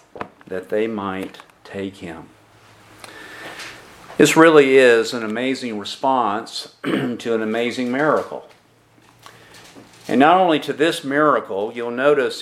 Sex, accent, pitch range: male, American, 120-150 Hz